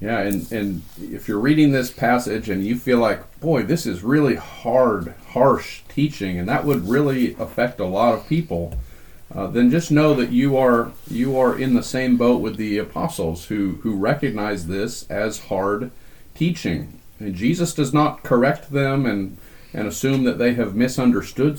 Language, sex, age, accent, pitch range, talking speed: English, male, 40-59, American, 100-135 Hz, 180 wpm